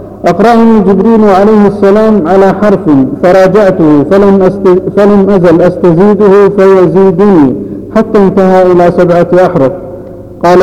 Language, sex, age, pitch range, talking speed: Arabic, male, 50-69, 160-195 Hz, 100 wpm